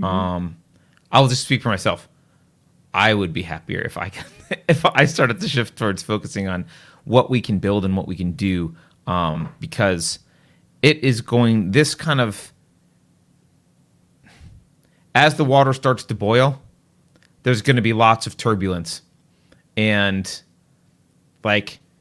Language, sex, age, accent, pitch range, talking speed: English, male, 30-49, American, 100-130 Hz, 145 wpm